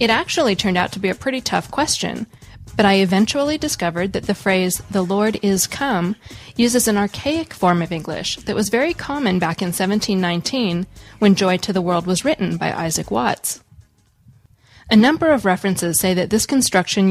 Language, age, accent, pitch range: English, 20-39, American, 180-220 Hz